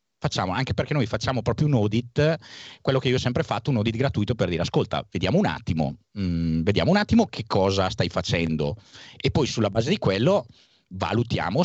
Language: Italian